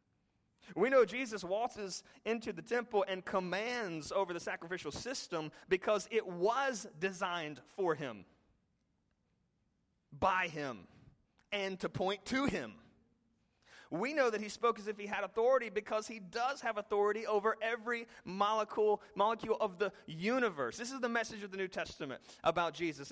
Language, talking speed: English, 150 wpm